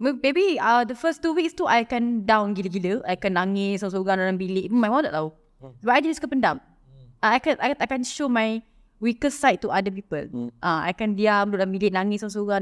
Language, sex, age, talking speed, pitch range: English, female, 20-39, 240 wpm, 200-305 Hz